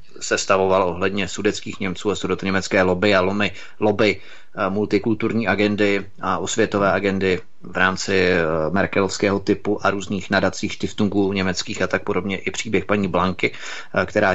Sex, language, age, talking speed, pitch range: male, Czech, 30-49, 140 wpm, 95-105 Hz